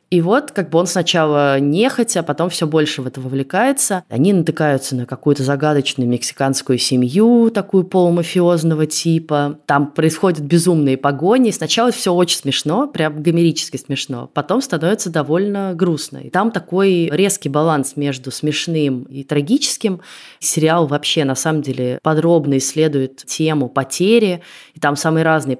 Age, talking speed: 20-39, 145 wpm